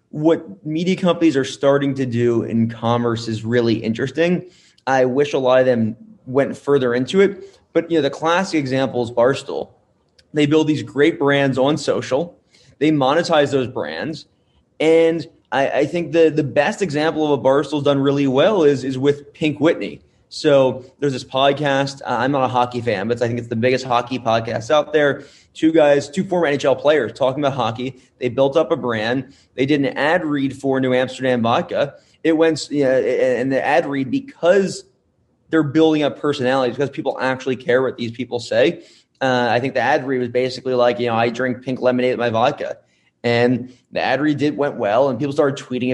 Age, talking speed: 20-39, 200 wpm